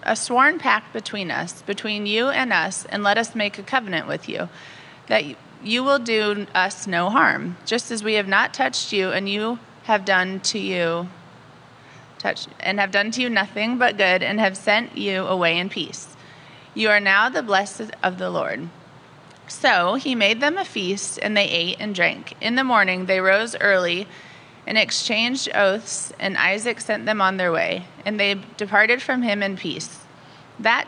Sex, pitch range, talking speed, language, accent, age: female, 185-225 Hz, 185 wpm, English, American, 30-49